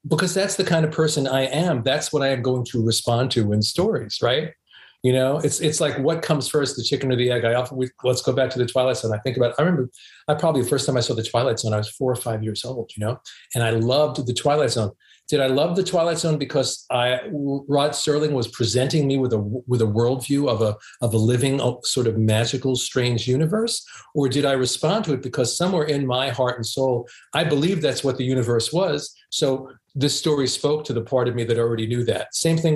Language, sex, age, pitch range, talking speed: English, male, 40-59, 120-145 Hz, 245 wpm